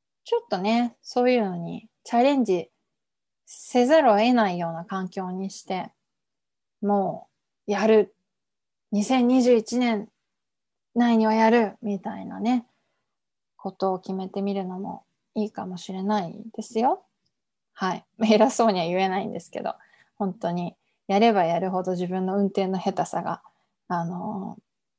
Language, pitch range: Japanese, 185-225 Hz